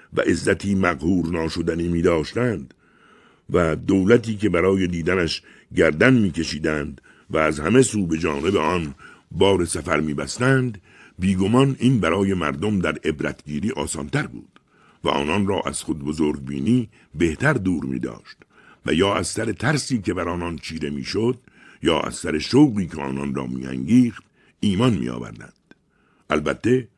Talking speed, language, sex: 140 wpm, Persian, male